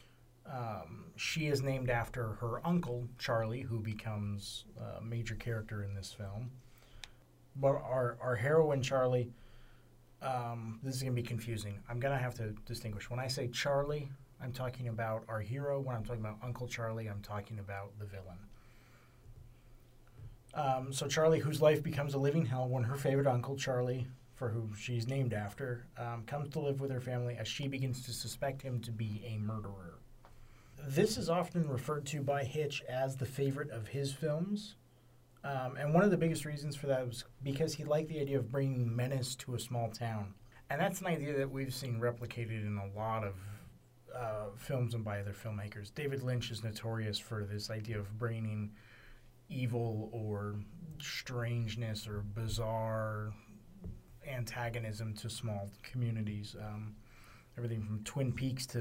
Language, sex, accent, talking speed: English, male, American, 170 wpm